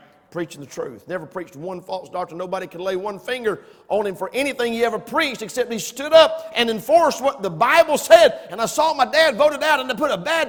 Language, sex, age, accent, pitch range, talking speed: English, male, 50-69, American, 165-235 Hz, 240 wpm